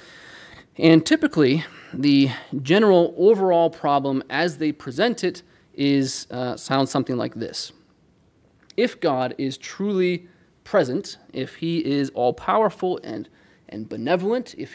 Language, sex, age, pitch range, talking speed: English, male, 30-49, 135-180 Hz, 120 wpm